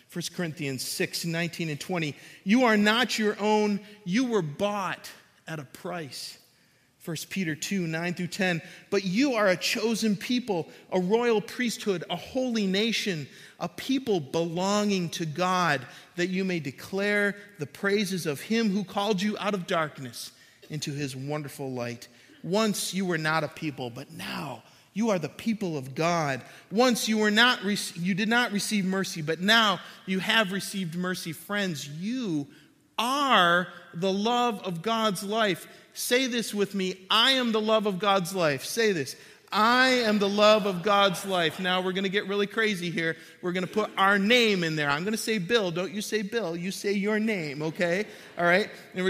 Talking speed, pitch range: 185 wpm, 165-210 Hz